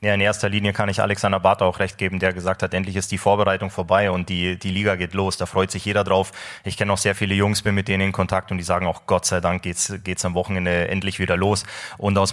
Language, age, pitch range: German, 20-39, 95-105 Hz